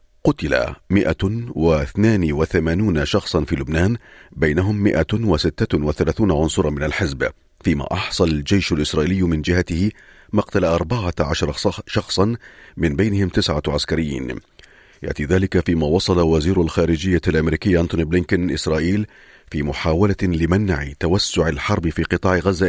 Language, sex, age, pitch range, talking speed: Arabic, male, 40-59, 80-100 Hz, 110 wpm